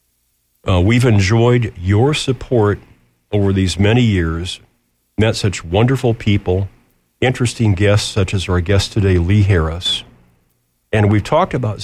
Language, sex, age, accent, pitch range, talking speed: English, male, 50-69, American, 90-115 Hz, 130 wpm